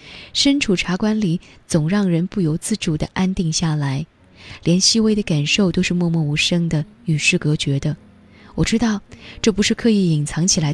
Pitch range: 155-215 Hz